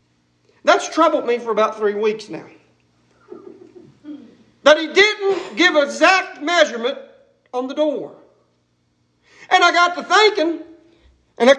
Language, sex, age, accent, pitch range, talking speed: English, male, 40-59, American, 260-345 Hz, 125 wpm